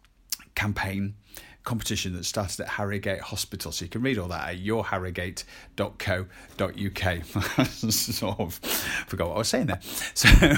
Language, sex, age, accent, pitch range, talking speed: English, male, 40-59, British, 100-125 Hz, 135 wpm